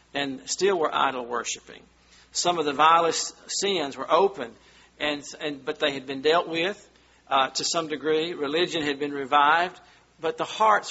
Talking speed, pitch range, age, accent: 170 wpm, 140-175 Hz, 50-69, American